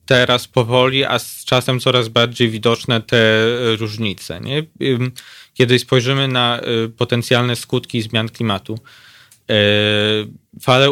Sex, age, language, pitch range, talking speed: male, 20-39, Polish, 115-130 Hz, 100 wpm